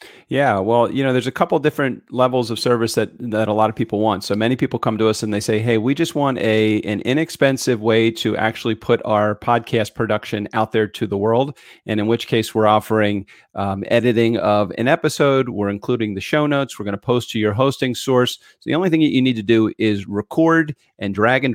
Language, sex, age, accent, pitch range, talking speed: English, male, 40-59, American, 105-125 Hz, 235 wpm